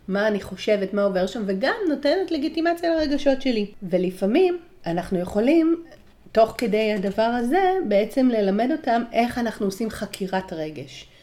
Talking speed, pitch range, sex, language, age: 140 wpm, 195-285 Hz, female, Hebrew, 40-59